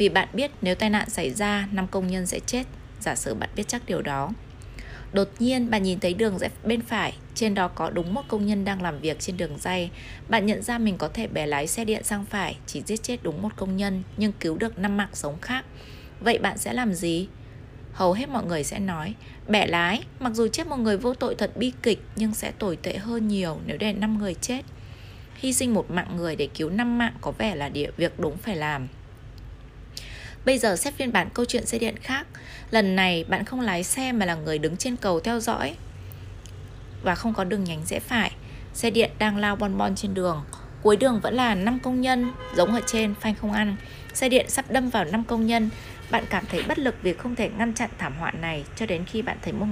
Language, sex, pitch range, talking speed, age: Vietnamese, female, 170-230 Hz, 235 wpm, 20-39